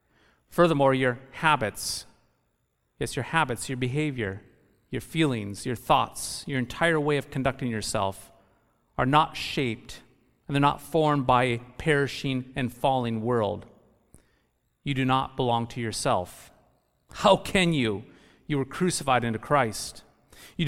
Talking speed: 135 wpm